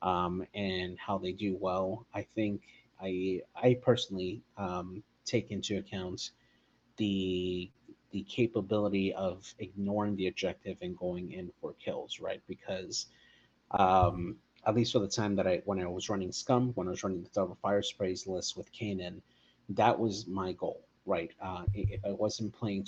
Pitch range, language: 90-105 Hz, English